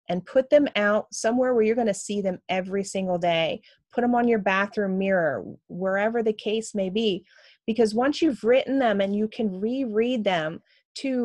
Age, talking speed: 30-49, 185 wpm